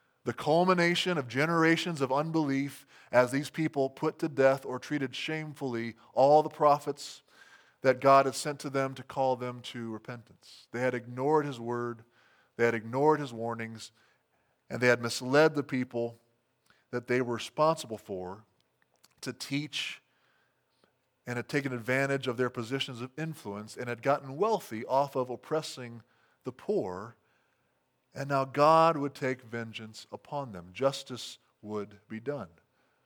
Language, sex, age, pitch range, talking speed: English, male, 20-39, 120-145 Hz, 150 wpm